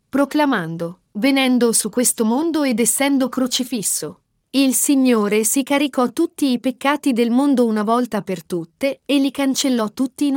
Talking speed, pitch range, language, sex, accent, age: 150 wpm, 220-275 Hz, Italian, female, native, 40-59